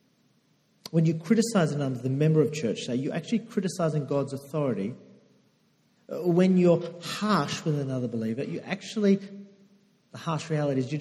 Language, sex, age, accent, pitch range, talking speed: English, male, 40-59, Australian, 130-180 Hz, 155 wpm